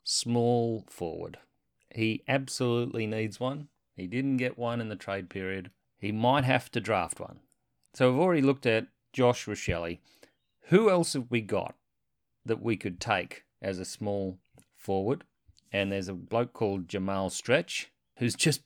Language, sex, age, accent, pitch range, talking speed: English, male, 40-59, Australian, 95-130 Hz, 160 wpm